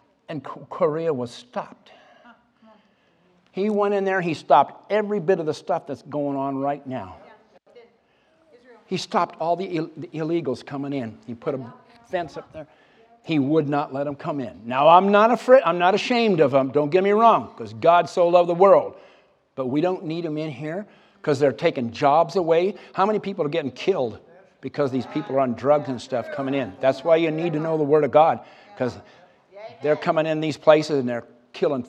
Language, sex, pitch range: English, male, 155-220 Hz